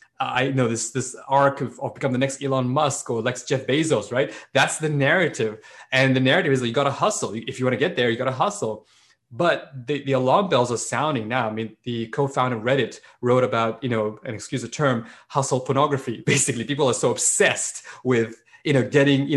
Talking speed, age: 225 wpm, 20-39